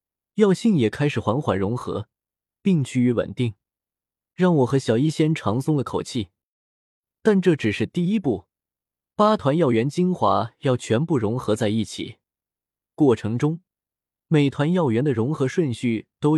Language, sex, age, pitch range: Chinese, male, 20-39, 110-165 Hz